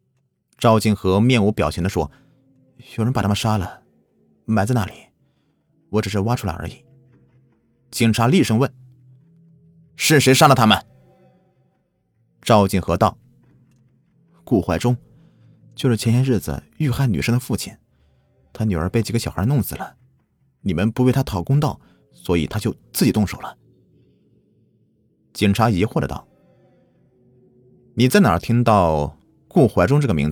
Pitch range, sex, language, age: 110-135 Hz, male, Chinese, 30-49